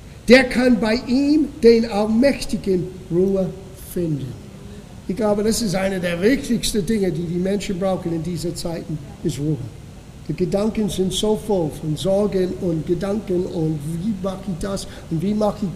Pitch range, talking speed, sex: 180-235 Hz, 165 wpm, male